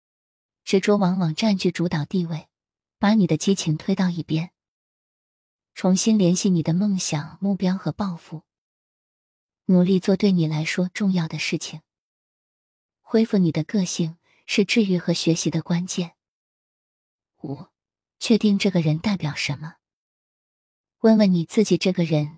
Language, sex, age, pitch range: Chinese, female, 20-39, 160-195 Hz